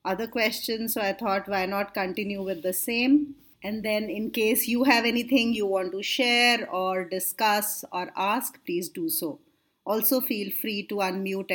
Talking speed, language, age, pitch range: 175 wpm, English, 30-49, 195-275 Hz